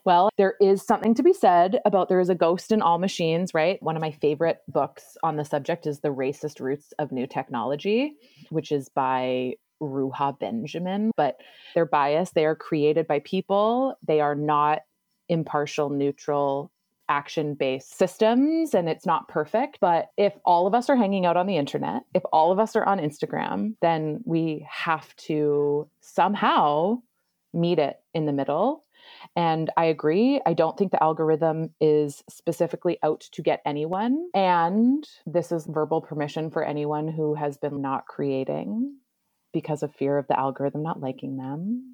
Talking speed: 170 wpm